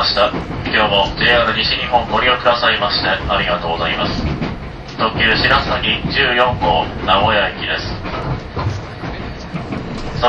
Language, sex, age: Japanese, male, 30-49